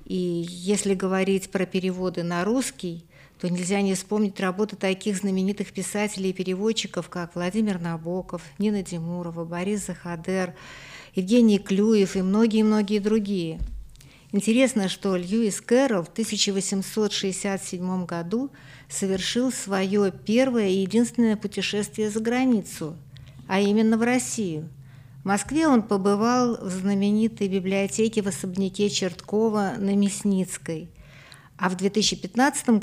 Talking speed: 115 wpm